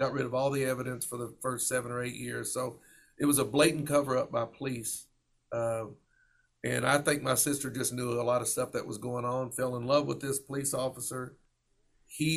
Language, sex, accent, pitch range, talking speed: English, male, American, 120-140 Hz, 225 wpm